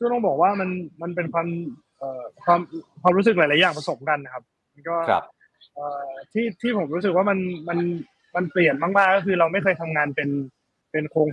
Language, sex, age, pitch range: Thai, male, 20-39, 155-185 Hz